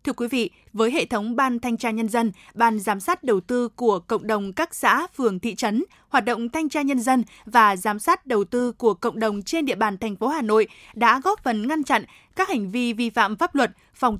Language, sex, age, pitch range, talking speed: Vietnamese, female, 20-39, 220-260 Hz, 245 wpm